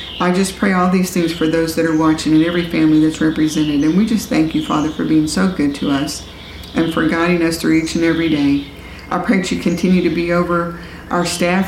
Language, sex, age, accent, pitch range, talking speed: English, female, 50-69, American, 155-185 Hz, 240 wpm